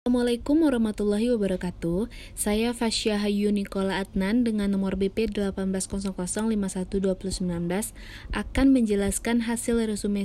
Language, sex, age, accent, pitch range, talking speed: Indonesian, female, 20-39, native, 185-210 Hz, 90 wpm